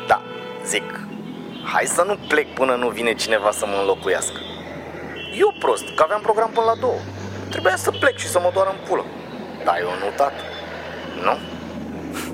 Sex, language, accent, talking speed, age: male, Romanian, native, 165 wpm, 30-49